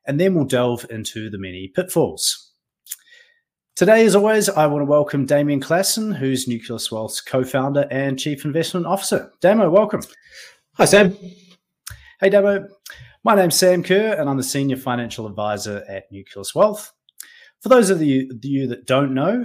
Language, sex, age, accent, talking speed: English, male, 30-49, Australian, 155 wpm